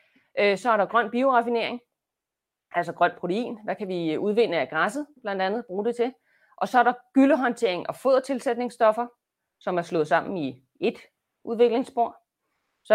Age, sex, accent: 30-49, female, native